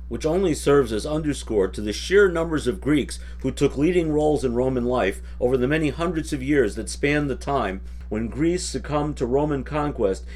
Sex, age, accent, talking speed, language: male, 50-69, American, 195 wpm, English